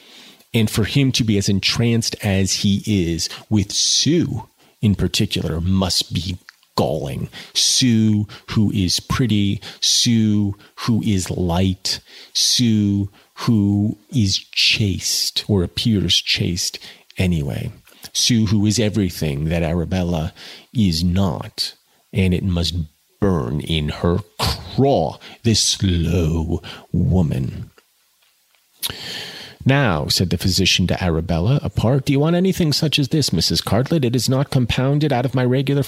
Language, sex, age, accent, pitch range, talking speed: English, male, 40-59, American, 95-145 Hz, 125 wpm